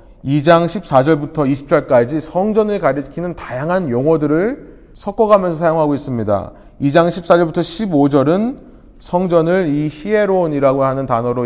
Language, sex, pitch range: Korean, male, 135-190 Hz